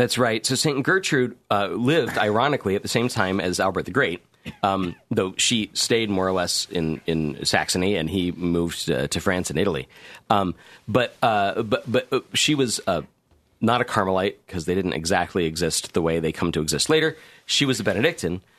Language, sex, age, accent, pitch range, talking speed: English, male, 40-59, American, 90-120 Hz, 195 wpm